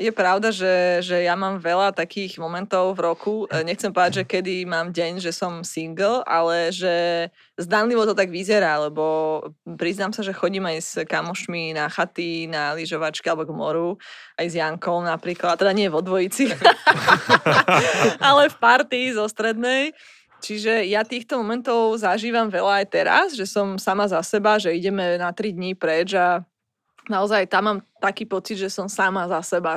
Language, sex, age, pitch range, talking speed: Slovak, female, 20-39, 170-210 Hz, 170 wpm